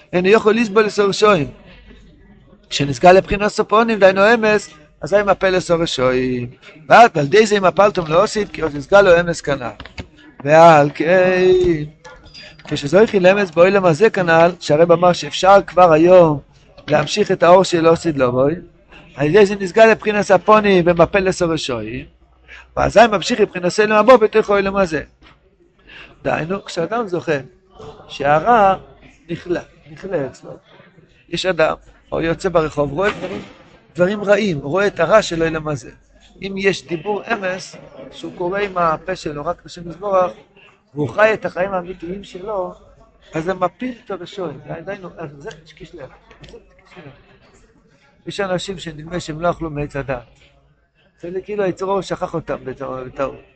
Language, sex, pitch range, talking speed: Hebrew, male, 155-195 Hz, 140 wpm